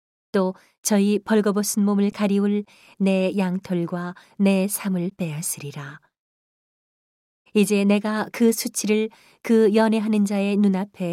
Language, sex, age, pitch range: Korean, female, 40-59, 170-205 Hz